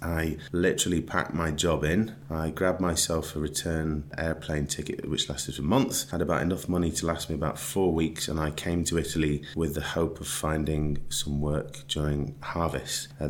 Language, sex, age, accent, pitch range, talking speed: English, male, 30-49, British, 75-85 Hz, 190 wpm